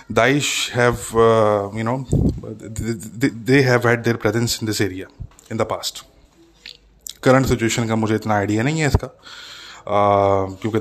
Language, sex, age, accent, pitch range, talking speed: English, male, 20-39, Indian, 105-120 Hz, 135 wpm